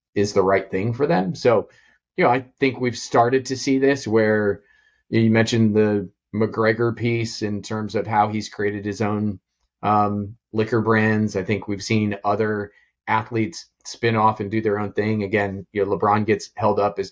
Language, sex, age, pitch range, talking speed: English, male, 30-49, 100-115 Hz, 190 wpm